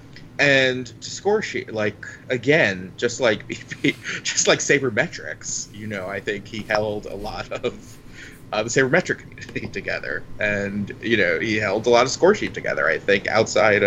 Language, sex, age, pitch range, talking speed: English, male, 20-39, 100-125 Hz, 170 wpm